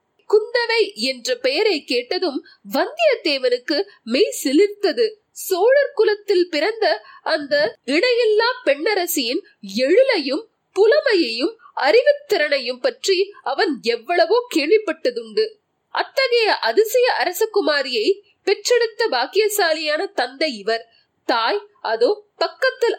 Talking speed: 40 wpm